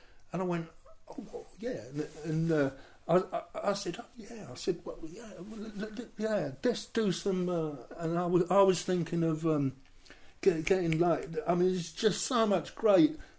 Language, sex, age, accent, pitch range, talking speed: English, male, 50-69, British, 130-180 Hz, 195 wpm